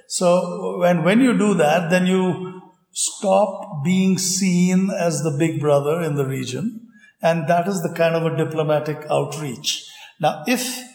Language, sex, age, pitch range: English, male, 60-79, 155-205 Hz